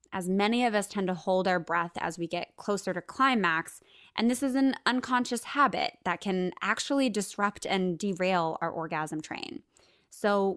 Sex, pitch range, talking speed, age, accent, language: female, 180-230 Hz, 175 wpm, 20-39, American, English